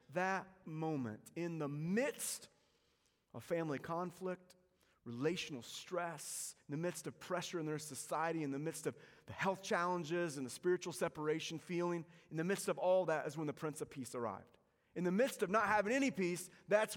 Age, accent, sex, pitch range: 30-49, American, male, 150-195 Hz